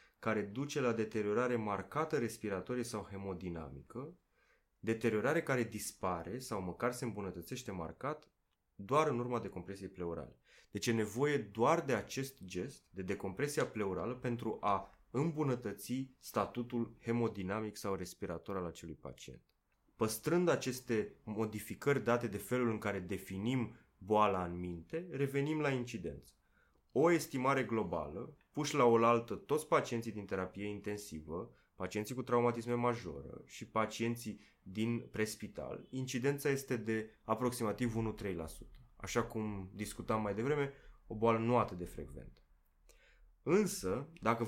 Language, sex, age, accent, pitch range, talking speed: Romanian, male, 20-39, native, 95-120 Hz, 125 wpm